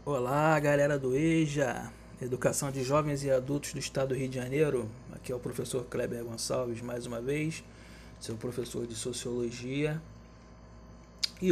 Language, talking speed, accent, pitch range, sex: Portuguese, 150 wpm, Brazilian, 120-175 Hz, male